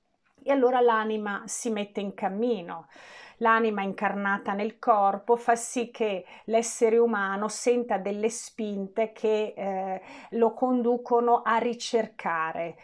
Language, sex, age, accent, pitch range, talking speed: Italian, female, 40-59, native, 195-255 Hz, 110 wpm